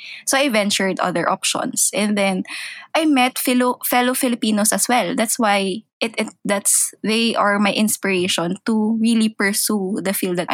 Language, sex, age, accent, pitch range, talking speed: English, female, 20-39, Filipino, 200-250 Hz, 165 wpm